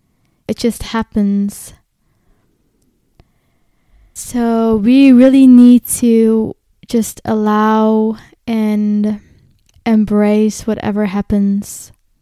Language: English